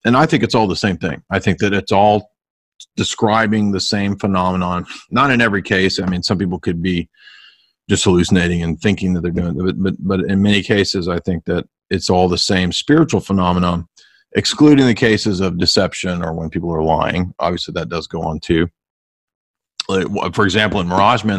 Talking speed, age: 195 wpm, 40-59